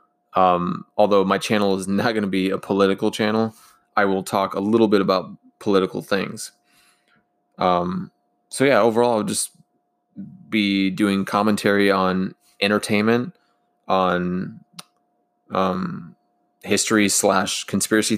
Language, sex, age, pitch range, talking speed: English, male, 20-39, 95-105 Hz, 120 wpm